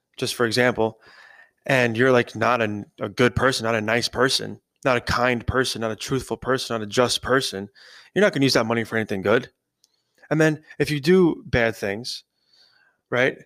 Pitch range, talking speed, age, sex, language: 115-130 Hz, 195 wpm, 20-39, male, English